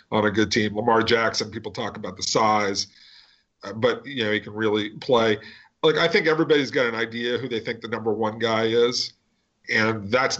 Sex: male